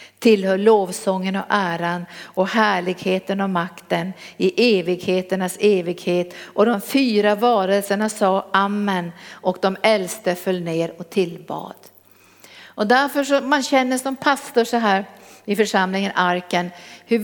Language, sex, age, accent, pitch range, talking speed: Swedish, female, 50-69, native, 190-245 Hz, 130 wpm